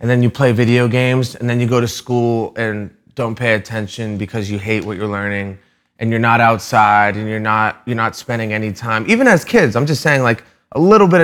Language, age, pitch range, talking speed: English, 30-49, 110-135 Hz, 235 wpm